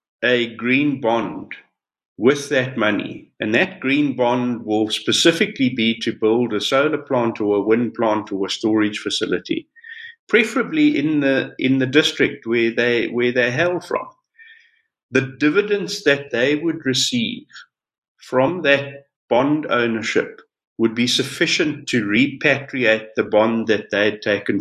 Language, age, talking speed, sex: English, 50-69, 145 wpm, male